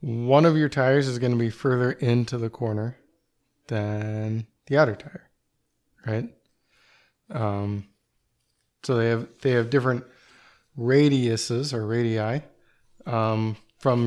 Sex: male